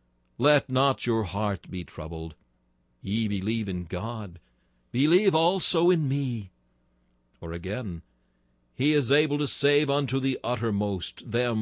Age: 60-79